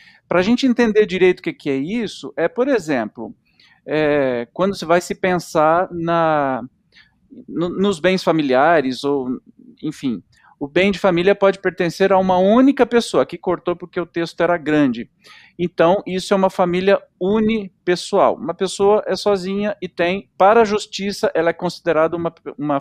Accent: Brazilian